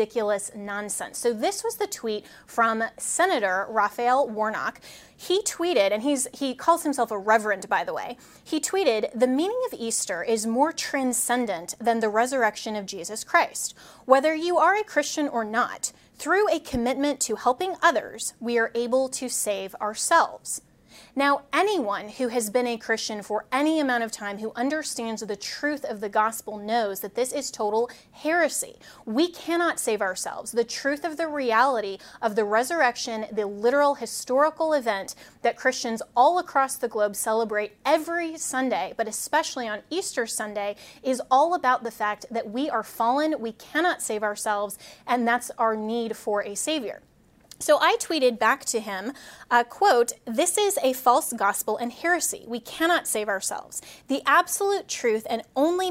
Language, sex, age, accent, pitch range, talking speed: English, female, 30-49, American, 220-295 Hz, 165 wpm